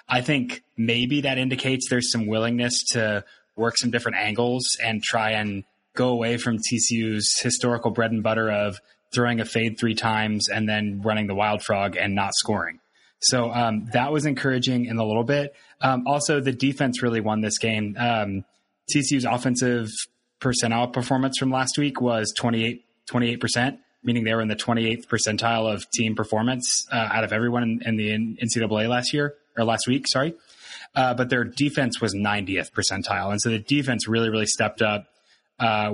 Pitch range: 110-120 Hz